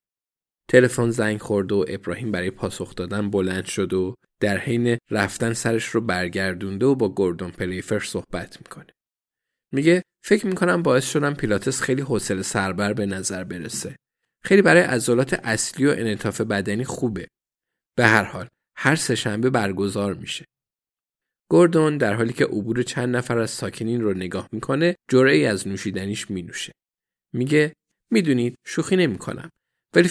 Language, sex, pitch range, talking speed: Persian, male, 100-135 Hz, 145 wpm